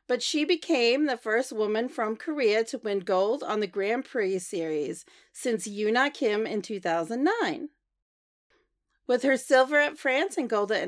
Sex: female